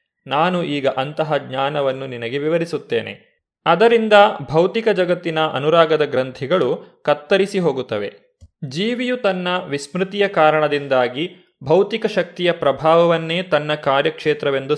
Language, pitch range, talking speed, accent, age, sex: Kannada, 145-180 Hz, 90 wpm, native, 20-39, male